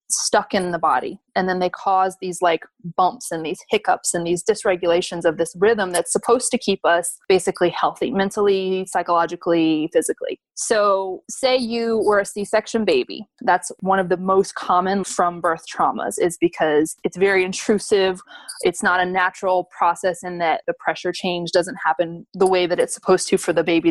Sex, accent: female, American